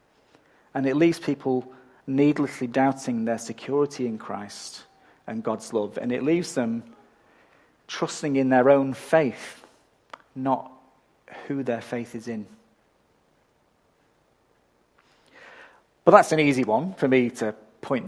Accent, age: British, 40-59